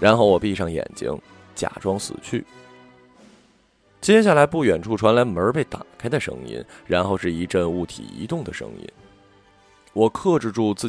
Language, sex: Chinese, male